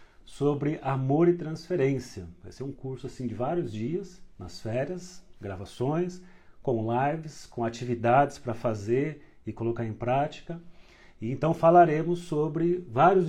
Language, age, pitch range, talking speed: Portuguese, 40-59, 115-150 Hz, 135 wpm